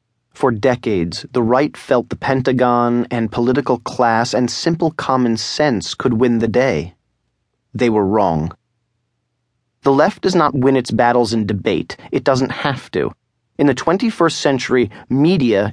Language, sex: English, male